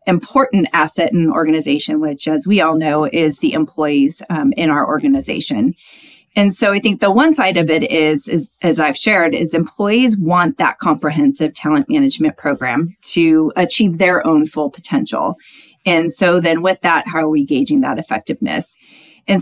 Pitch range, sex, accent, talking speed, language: 160-215 Hz, female, American, 175 wpm, English